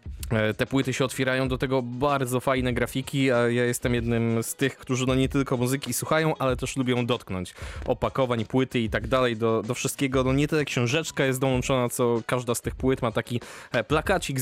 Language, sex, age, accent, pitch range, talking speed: Polish, male, 20-39, native, 115-130 Hz, 190 wpm